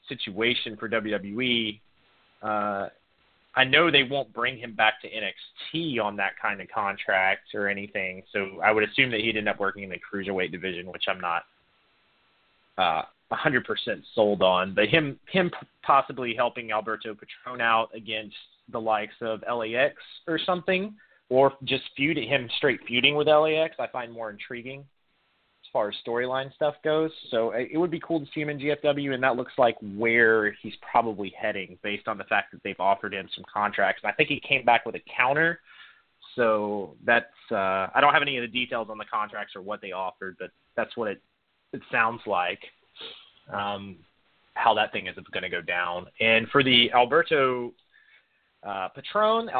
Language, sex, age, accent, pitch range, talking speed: English, male, 30-49, American, 105-140 Hz, 180 wpm